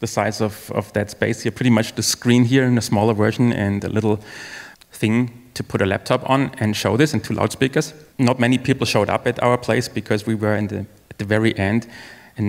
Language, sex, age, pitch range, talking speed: English, male, 30-49, 100-120 Hz, 225 wpm